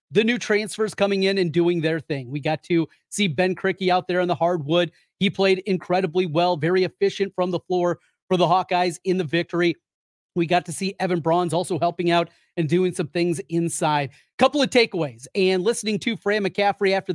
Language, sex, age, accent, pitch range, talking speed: English, male, 30-49, American, 170-195 Hz, 205 wpm